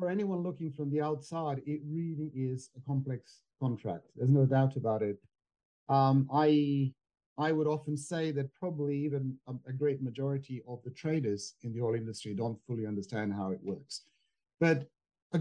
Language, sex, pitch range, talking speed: English, male, 110-140 Hz, 170 wpm